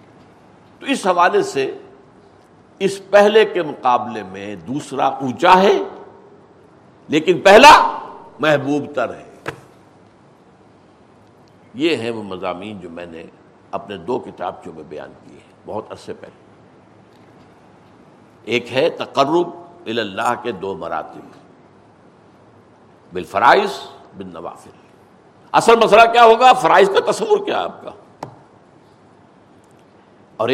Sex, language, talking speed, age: male, Urdu, 110 wpm, 60-79